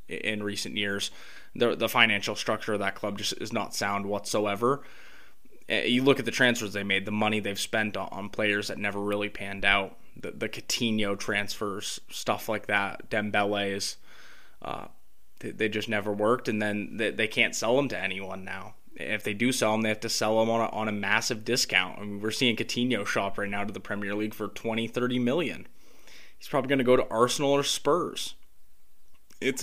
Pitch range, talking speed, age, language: 100-115 Hz, 200 wpm, 20-39, English